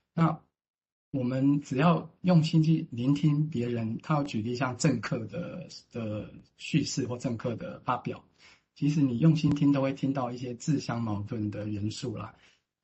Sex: male